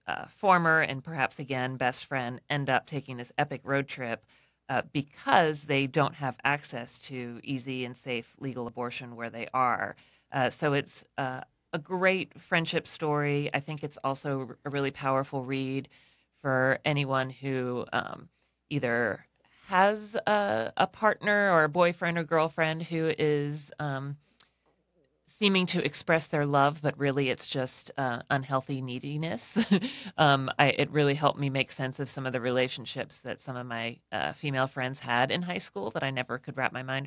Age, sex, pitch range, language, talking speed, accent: 30-49, female, 130-155 Hz, English, 170 wpm, American